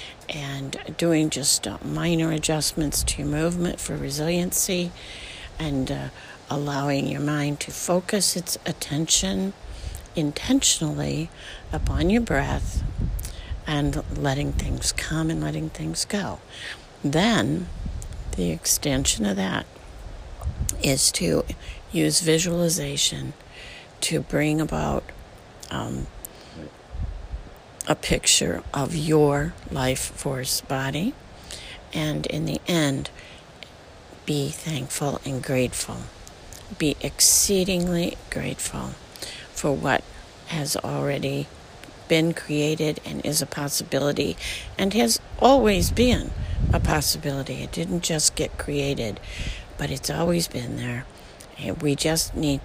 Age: 60-79